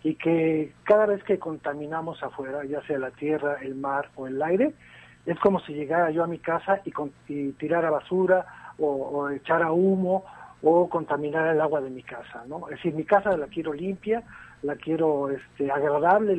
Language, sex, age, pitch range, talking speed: Spanish, male, 50-69, 150-190 Hz, 195 wpm